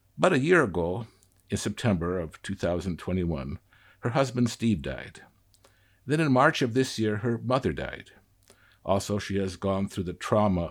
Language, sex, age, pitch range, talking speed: English, male, 60-79, 95-110 Hz, 155 wpm